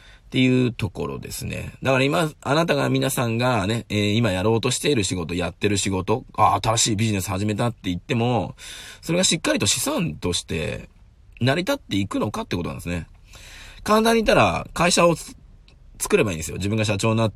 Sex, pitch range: male, 95-145 Hz